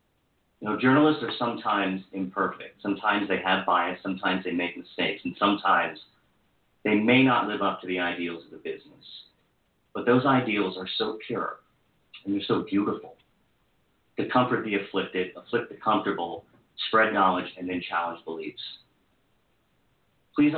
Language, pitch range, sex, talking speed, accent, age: English, 95-125 Hz, male, 150 wpm, American, 40-59